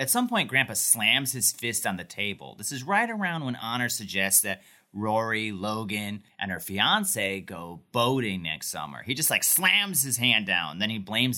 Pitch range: 105-155 Hz